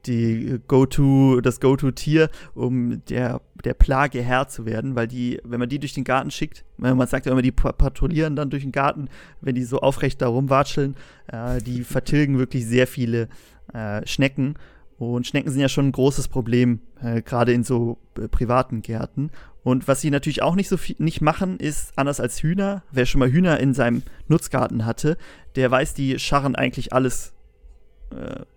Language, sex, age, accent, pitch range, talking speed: German, male, 30-49, German, 120-140 Hz, 185 wpm